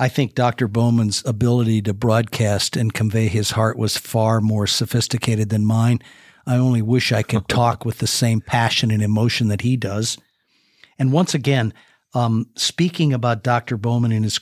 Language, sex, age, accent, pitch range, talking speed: English, male, 50-69, American, 110-130 Hz, 175 wpm